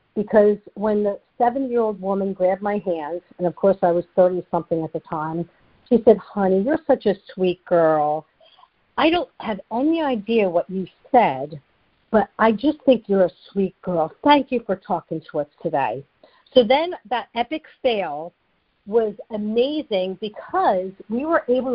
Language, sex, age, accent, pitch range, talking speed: English, female, 50-69, American, 190-240 Hz, 165 wpm